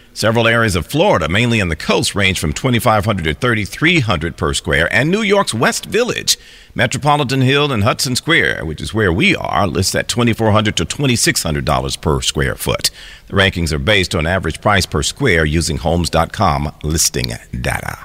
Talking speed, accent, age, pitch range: 165 wpm, American, 50-69, 90-130 Hz